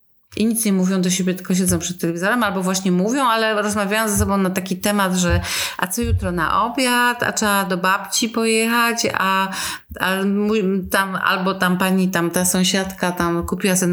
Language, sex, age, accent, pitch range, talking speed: Polish, female, 30-49, native, 180-210 Hz, 185 wpm